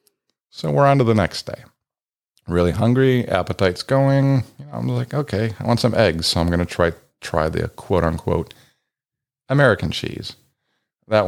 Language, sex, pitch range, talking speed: English, male, 85-115 Hz, 155 wpm